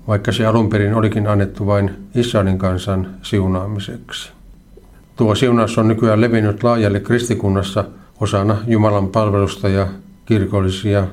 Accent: native